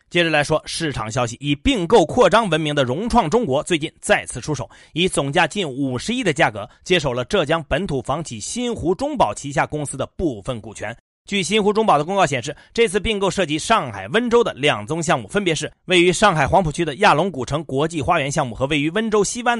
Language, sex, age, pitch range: Chinese, male, 30-49, 135-195 Hz